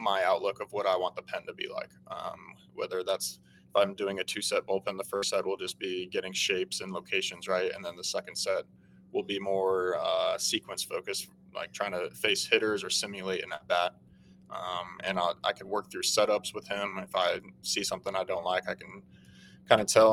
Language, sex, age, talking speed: English, male, 20-39, 220 wpm